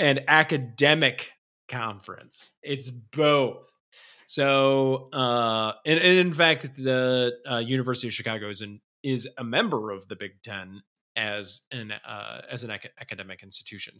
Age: 20-39